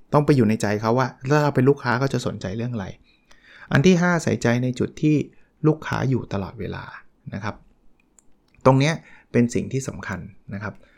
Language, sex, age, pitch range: Thai, male, 20-39, 110-140 Hz